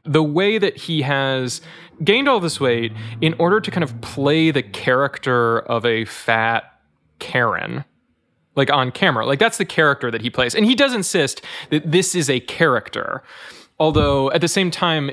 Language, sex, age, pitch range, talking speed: English, male, 20-39, 120-170 Hz, 180 wpm